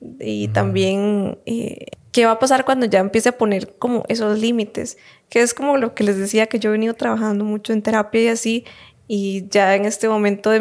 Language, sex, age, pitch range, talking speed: Spanish, female, 20-39, 210-235 Hz, 215 wpm